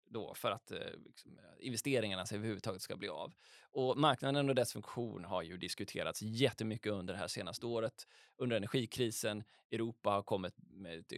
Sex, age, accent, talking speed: male, 20-39, native, 160 wpm